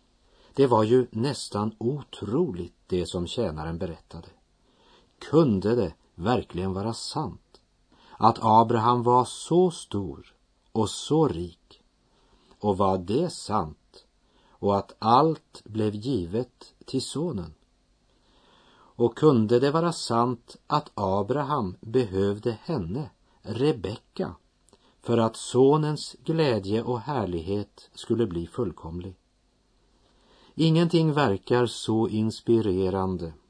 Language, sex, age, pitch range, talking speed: Russian, male, 50-69, 95-125 Hz, 100 wpm